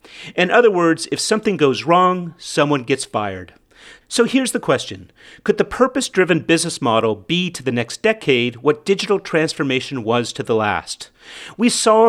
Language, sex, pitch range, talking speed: English, male, 130-180 Hz, 165 wpm